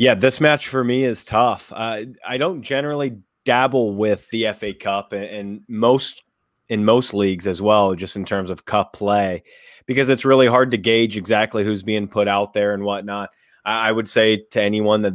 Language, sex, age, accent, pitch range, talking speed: English, male, 30-49, American, 95-110 Hz, 200 wpm